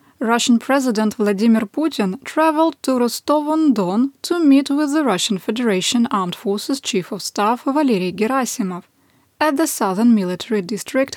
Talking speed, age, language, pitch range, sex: 135 wpm, 20-39, English, 205-275 Hz, female